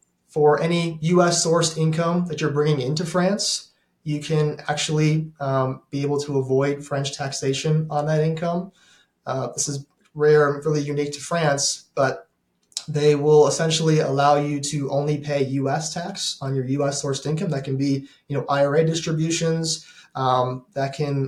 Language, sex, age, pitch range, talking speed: English, male, 20-39, 140-155 Hz, 165 wpm